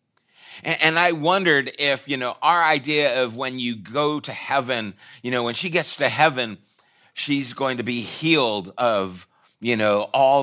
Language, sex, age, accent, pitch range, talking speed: English, male, 30-49, American, 110-140 Hz, 175 wpm